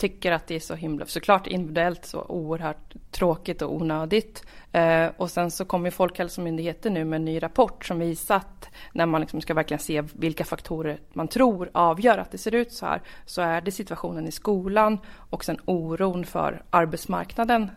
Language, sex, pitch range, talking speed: Swedish, female, 165-195 Hz, 185 wpm